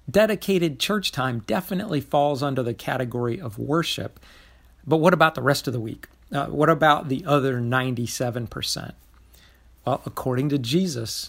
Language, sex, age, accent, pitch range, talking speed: English, male, 50-69, American, 115-150 Hz, 150 wpm